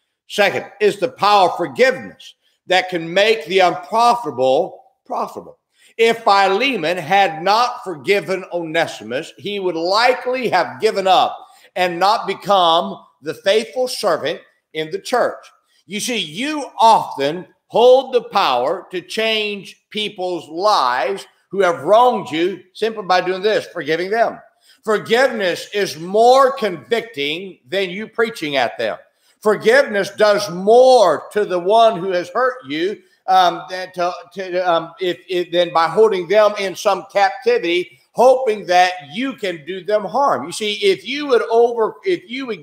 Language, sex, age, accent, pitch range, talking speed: English, male, 50-69, American, 180-245 Hz, 145 wpm